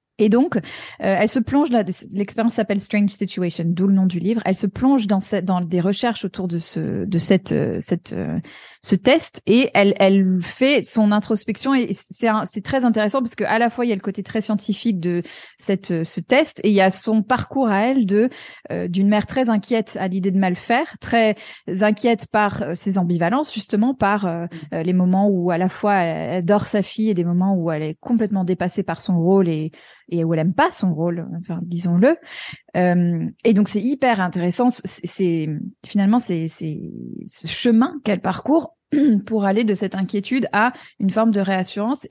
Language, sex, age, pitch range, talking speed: French, female, 20-39, 185-225 Hz, 205 wpm